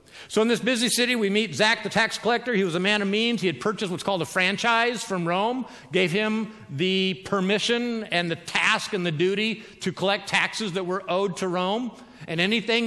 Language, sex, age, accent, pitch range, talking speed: English, male, 50-69, American, 135-200 Hz, 215 wpm